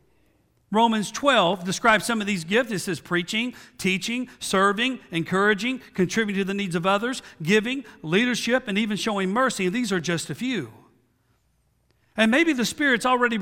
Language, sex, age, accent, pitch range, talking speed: English, male, 50-69, American, 190-250 Hz, 155 wpm